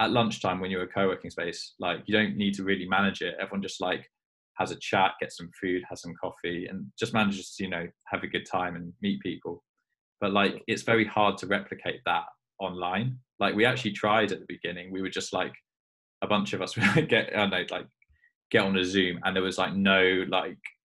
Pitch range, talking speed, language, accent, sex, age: 90-105 Hz, 225 wpm, English, British, male, 20-39